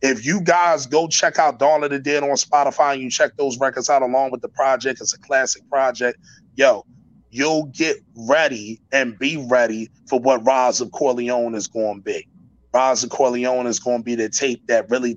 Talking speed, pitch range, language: 210 wpm, 120-145 Hz, English